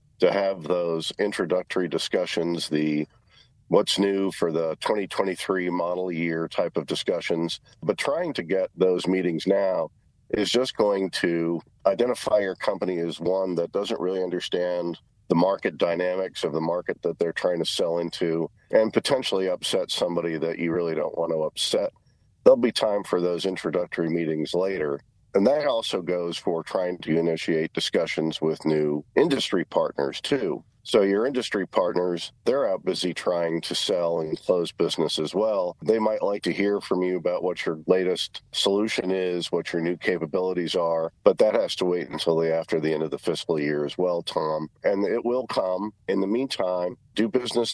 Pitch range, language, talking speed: 80-95 Hz, English, 175 wpm